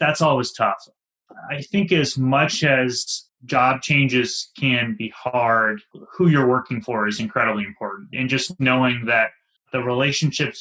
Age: 30-49